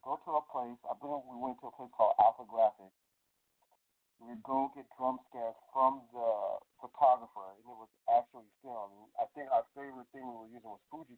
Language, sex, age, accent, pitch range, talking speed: English, male, 40-59, American, 110-130 Hz, 200 wpm